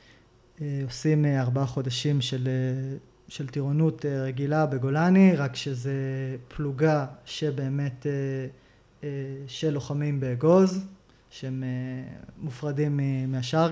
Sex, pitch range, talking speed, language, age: male, 130-155 Hz, 80 wpm, Hebrew, 20-39